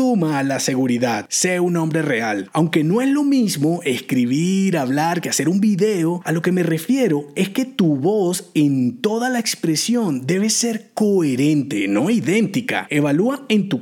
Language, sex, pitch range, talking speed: Spanish, male, 155-235 Hz, 170 wpm